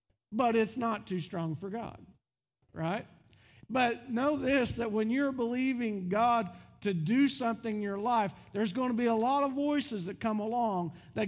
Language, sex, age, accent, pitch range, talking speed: English, male, 50-69, American, 170-235 Hz, 180 wpm